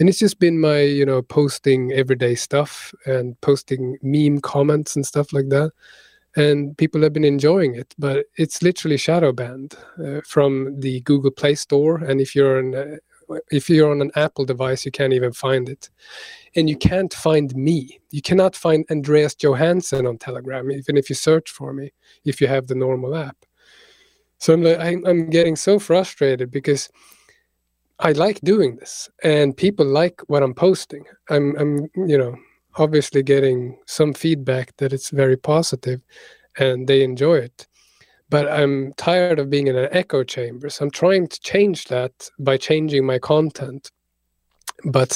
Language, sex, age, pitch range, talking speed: English, male, 30-49, 135-160 Hz, 170 wpm